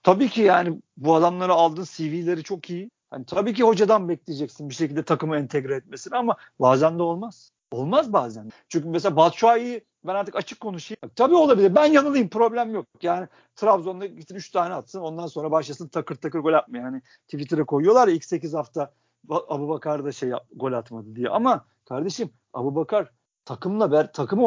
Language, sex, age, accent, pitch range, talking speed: Turkish, male, 50-69, native, 155-220 Hz, 175 wpm